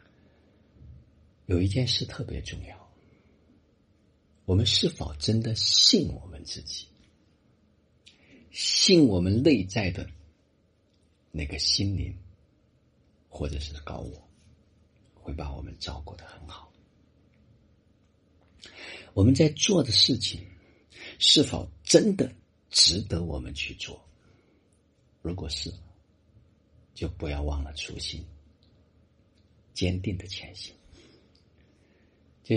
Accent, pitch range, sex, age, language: native, 75-100 Hz, male, 50-69, Chinese